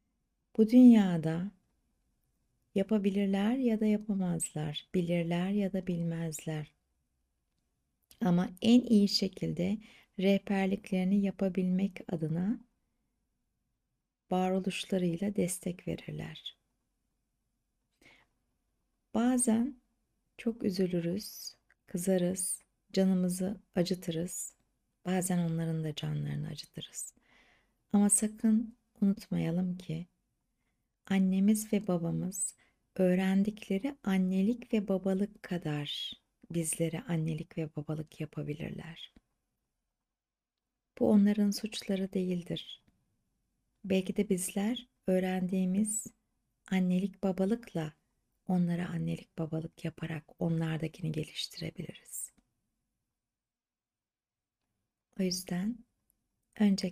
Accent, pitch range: native, 165-205 Hz